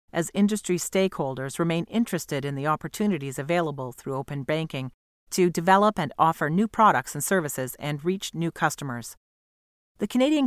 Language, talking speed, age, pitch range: English, 150 wpm, 40-59, 150-190 Hz